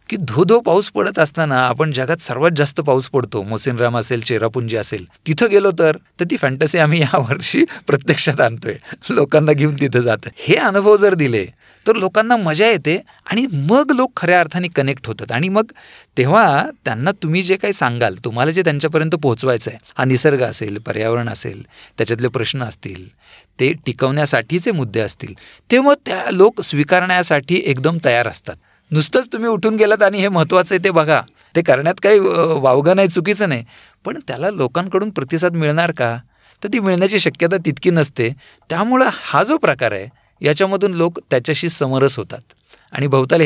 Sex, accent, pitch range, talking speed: male, native, 125-180 Hz, 165 wpm